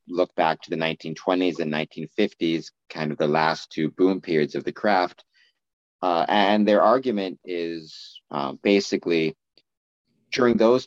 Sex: male